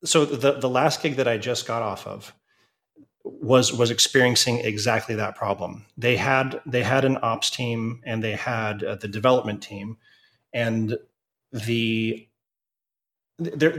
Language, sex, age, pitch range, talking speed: English, male, 30-49, 110-135 Hz, 150 wpm